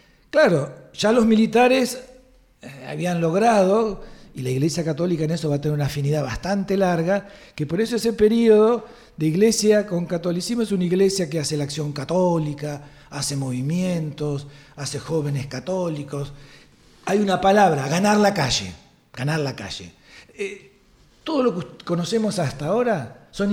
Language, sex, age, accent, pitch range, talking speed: Spanish, male, 60-79, Argentinian, 140-215 Hz, 150 wpm